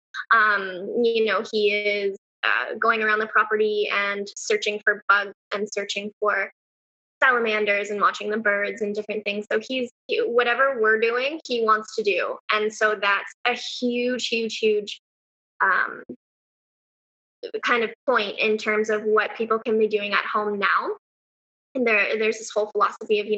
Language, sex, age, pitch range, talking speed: English, female, 10-29, 205-235 Hz, 165 wpm